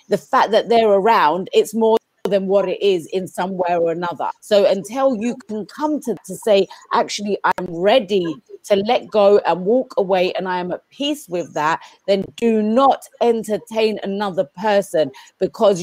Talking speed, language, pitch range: 180 wpm, English, 185-240 Hz